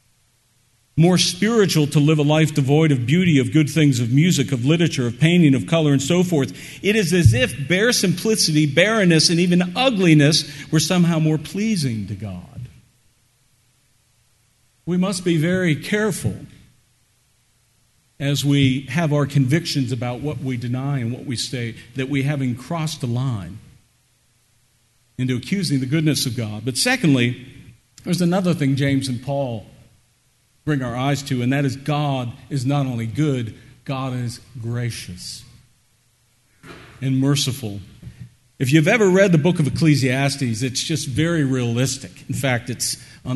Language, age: English, 50-69